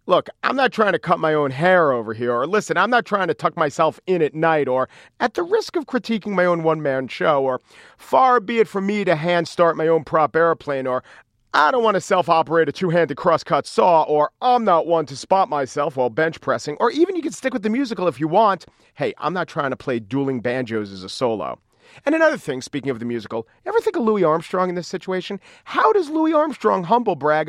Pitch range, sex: 150-220 Hz, male